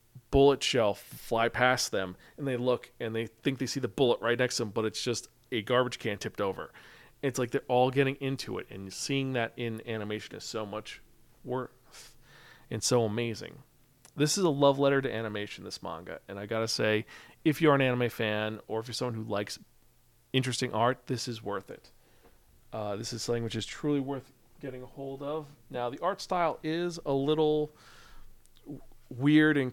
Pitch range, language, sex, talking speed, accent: 115-140 Hz, English, male, 195 wpm, American